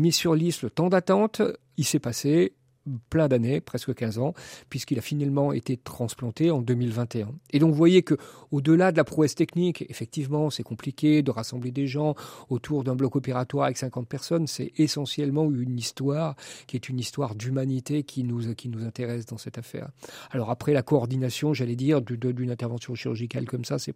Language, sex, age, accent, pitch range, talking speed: French, male, 40-59, French, 125-150 Hz, 190 wpm